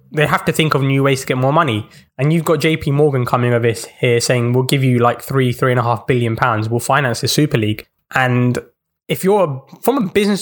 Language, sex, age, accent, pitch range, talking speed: English, male, 20-39, British, 125-160 Hz, 240 wpm